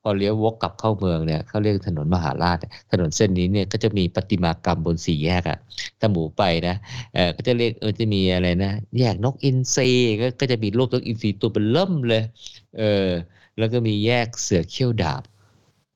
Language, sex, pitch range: Thai, male, 85-115 Hz